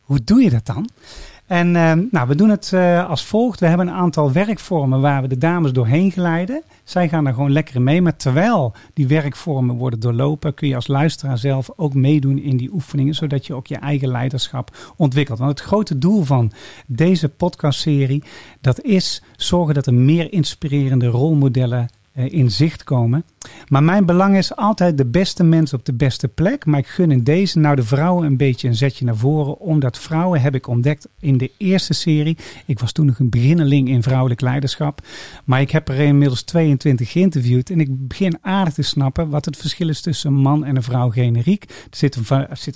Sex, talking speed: male, 200 wpm